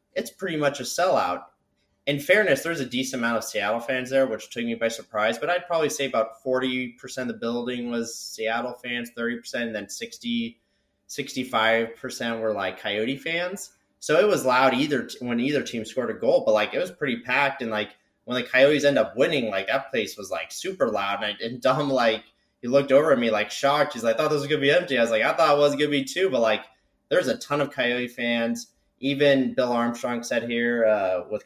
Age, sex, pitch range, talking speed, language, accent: 20-39, male, 110-135 Hz, 230 wpm, English, American